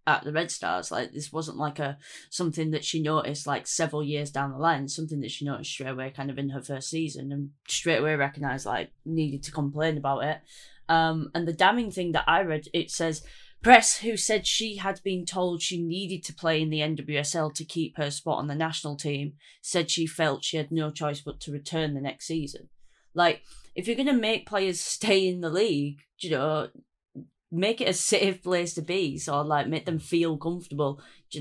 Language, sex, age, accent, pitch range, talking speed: English, female, 20-39, British, 145-170 Hz, 215 wpm